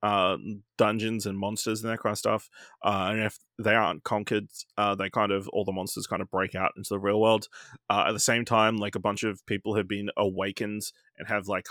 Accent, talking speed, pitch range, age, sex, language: Australian, 235 wpm, 100-110 Hz, 20-39, male, English